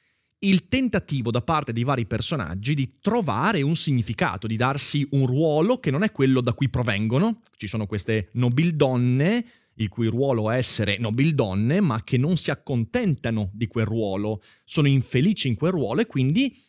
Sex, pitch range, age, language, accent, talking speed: male, 115-160 Hz, 30-49, Italian, native, 170 wpm